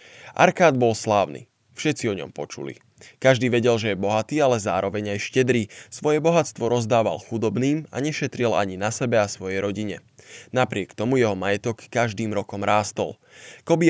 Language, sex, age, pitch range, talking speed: Slovak, male, 20-39, 110-130 Hz, 155 wpm